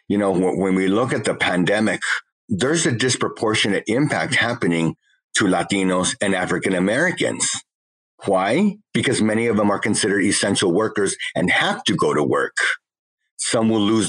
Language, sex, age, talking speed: English, male, 50-69, 150 wpm